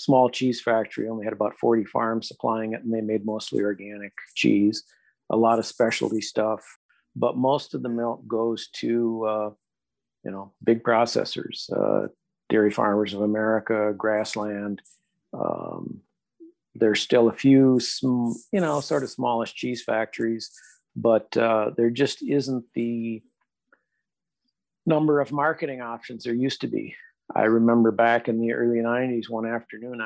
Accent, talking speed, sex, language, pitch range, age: American, 150 wpm, male, English, 110-125 Hz, 50-69